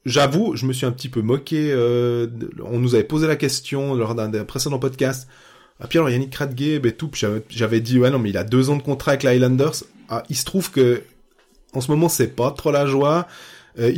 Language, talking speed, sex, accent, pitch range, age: French, 235 wpm, male, French, 115-140 Hz, 20-39